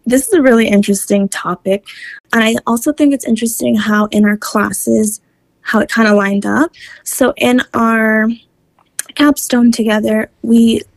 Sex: female